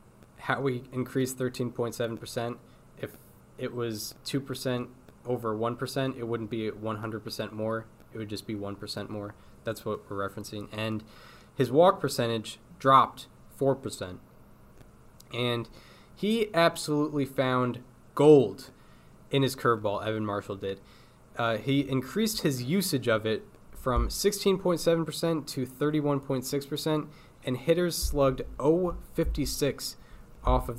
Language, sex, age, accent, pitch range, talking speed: English, male, 20-39, American, 110-145 Hz, 115 wpm